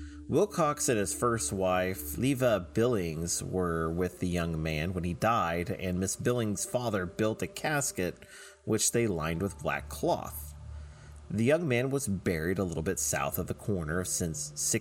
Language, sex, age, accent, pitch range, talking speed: English, male, 30-49, American, 85-120 Hz, 165 wpm